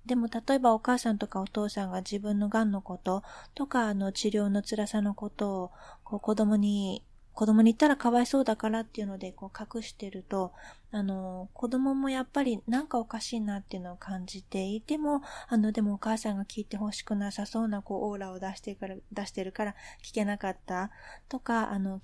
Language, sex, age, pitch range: Japanese, female, 20-39, 190-225 Hz